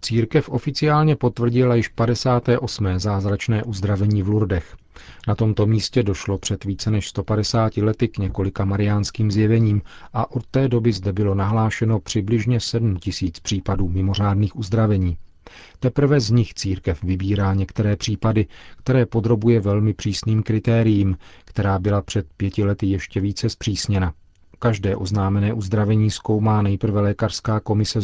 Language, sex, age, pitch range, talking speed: Czech, male, 40-59, 95-115 Hz, 130 wpm